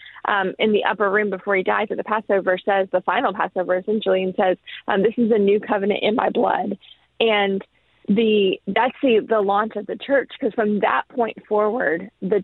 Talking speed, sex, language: 205 wpm, female, English